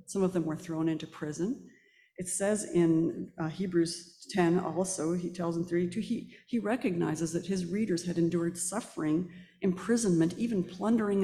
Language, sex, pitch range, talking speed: English, female, 170-210 Hz, 160 wpm